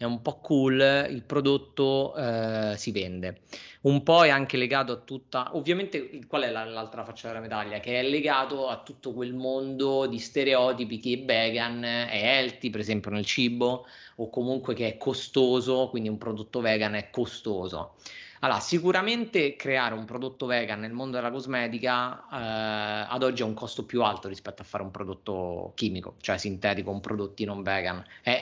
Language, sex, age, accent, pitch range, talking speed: Italian, male, 30-49, native, 110-135 Hz, 175 wpm